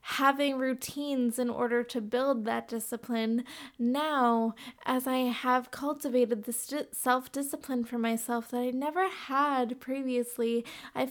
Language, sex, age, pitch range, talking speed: English, female, 20-39, 240-270 Hz, 125 wpm